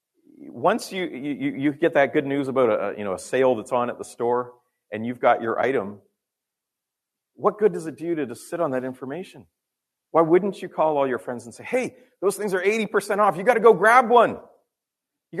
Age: 40-59